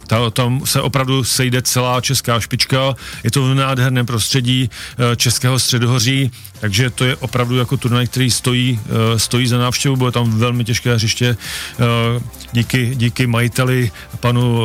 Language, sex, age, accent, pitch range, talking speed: Czech, male, 40-59, native, 115-130 Hz, 140 wpm